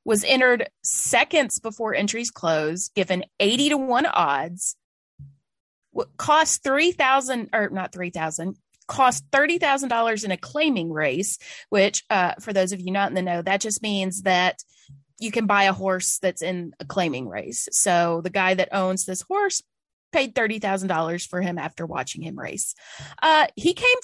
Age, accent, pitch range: 30-49, American, 180-245 Hz